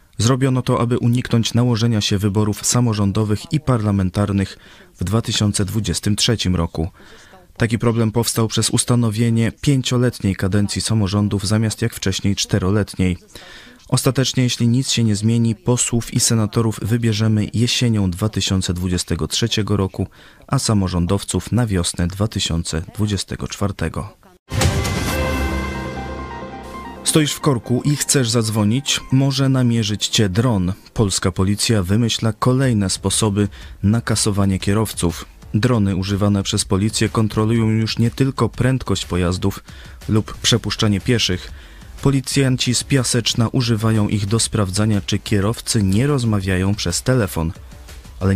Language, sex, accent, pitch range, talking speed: Polish, male, native, 95-115 Hz, 110 wpm